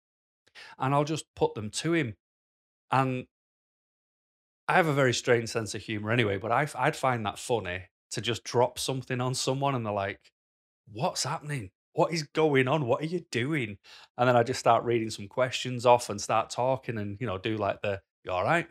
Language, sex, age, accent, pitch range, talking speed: English, male, 30-49, British, 105-150 Hz, 205 wpm